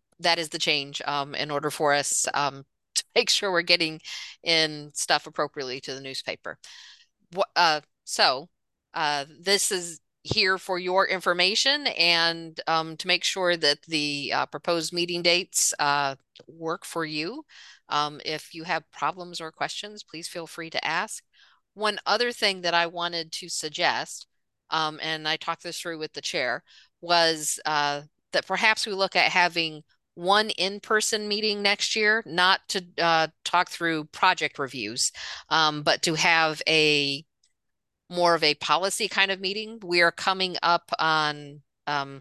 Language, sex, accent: English, female, American